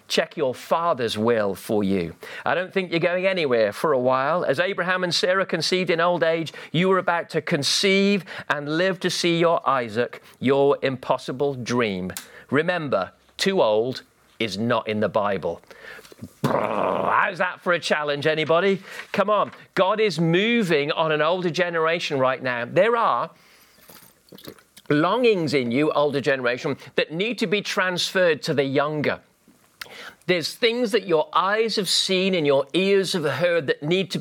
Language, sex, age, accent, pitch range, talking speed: English, male, 40-59, British, 145-185 Hz, 165 wpm